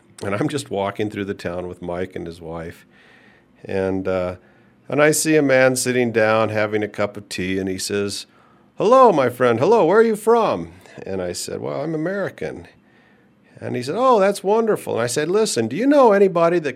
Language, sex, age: English, male, 50-69